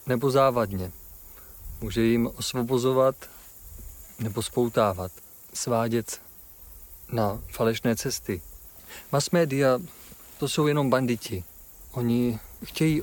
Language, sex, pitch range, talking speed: Czech, male, 90-125 Hz, 85 wpm